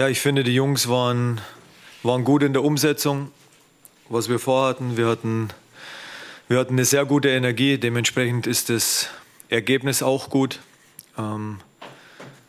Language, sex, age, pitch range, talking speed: German, male, 30-49, 110-130 Hz, 130 wpm